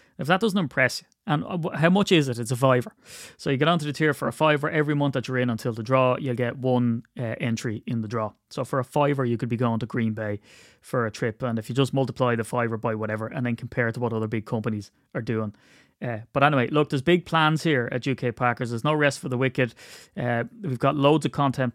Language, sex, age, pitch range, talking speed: English, male, 30-49, 115-135 Hz, 260 wpm